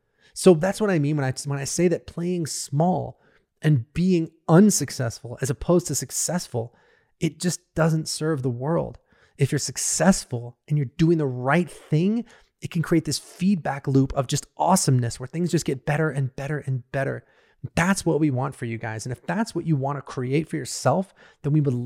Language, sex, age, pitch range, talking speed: English, male, 30-49, 140-175 Hz, 200 wpm